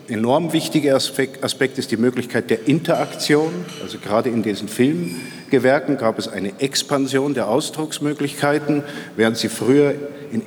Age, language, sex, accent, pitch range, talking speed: 50-69, German, male, German, 120-155 Hz, 140 wpm